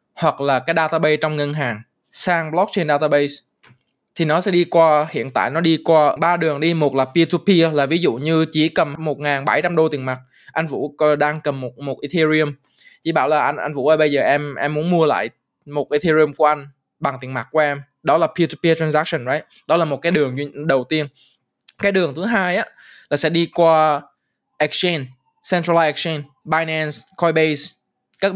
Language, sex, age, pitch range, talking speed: Vietnamese, male, 20-39, 145-175 Hz, 205 wpm